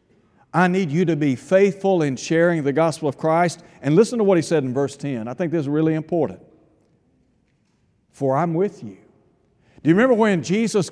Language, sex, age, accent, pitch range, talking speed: English, male, 60-79, American, 155-190 Hz, 200 wpm